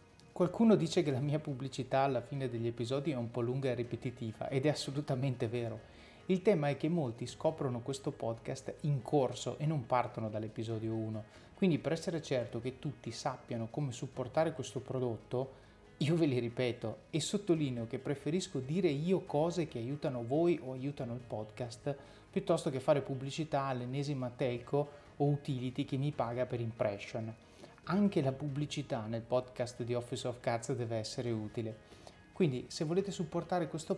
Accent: native